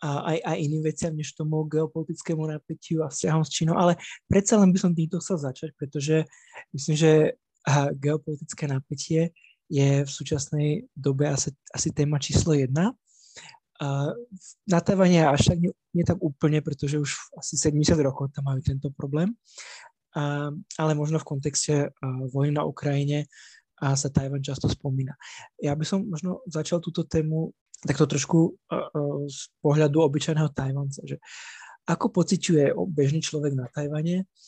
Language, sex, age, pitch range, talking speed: Slovak, male, 20-39, 140-165 Hz, 145 wpm